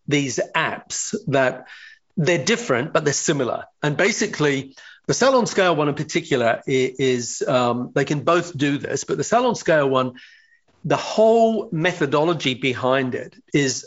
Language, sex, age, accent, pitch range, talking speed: English, male, 40-59, British, 130-175 Hz, 145 wpm